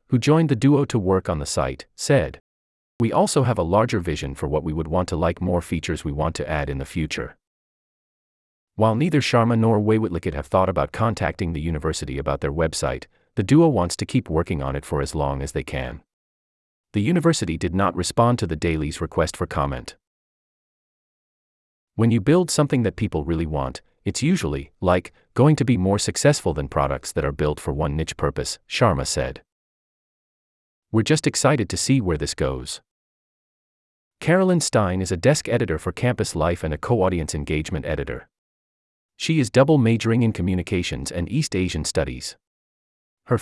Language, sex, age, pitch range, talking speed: English, male, 30-49, 75-120 Hz, 180 wpm